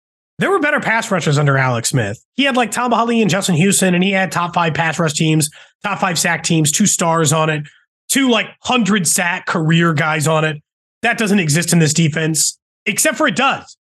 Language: English